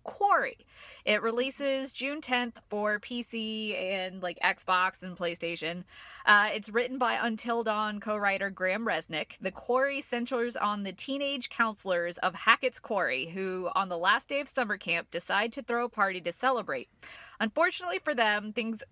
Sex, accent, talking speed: female, American, 160 wpm